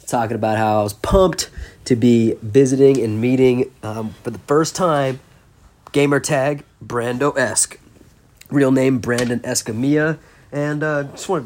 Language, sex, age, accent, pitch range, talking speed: English, male, 30-49, American, 110-135 Hz, 140 wpm